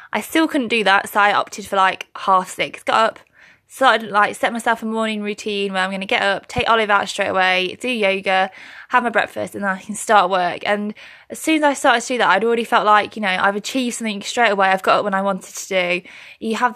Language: English